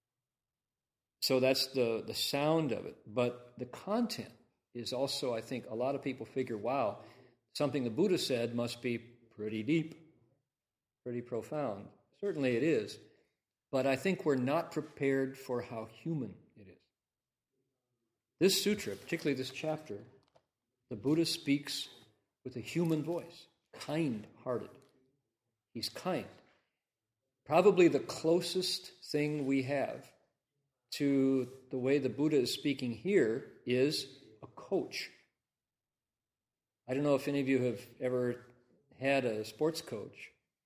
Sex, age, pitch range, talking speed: male, 50-69, 120-145 Hz, 130 wpm